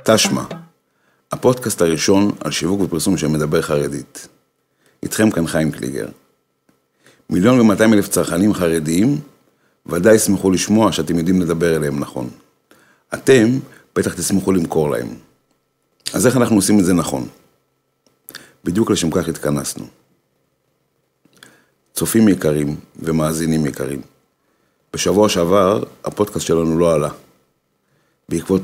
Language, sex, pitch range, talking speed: Hebrew, male, 70-95 Hz, 110 wpm